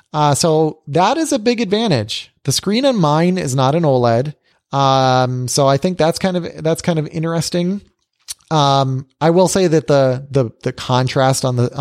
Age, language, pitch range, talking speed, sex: 30-49, English, 125-165 Hz, 190 wpm, male